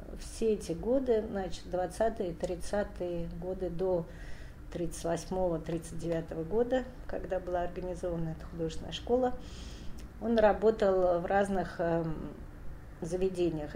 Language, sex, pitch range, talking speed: Russian, female, 160-185 Hz, 90 wpm